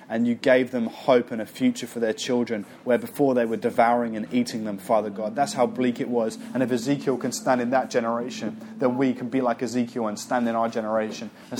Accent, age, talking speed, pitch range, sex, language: British, 20-39, 240 wpm, 120-135 Hz, male, English